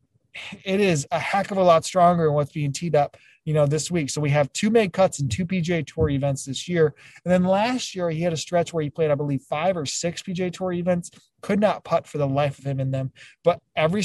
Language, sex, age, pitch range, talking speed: English, male, 20-39, 145-175 Hz, 260 wpm